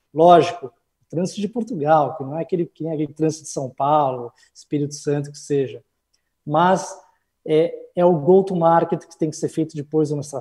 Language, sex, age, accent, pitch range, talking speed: Portuguese, male, 20-39, Brazilian, 155-205 Hz, 185 wpm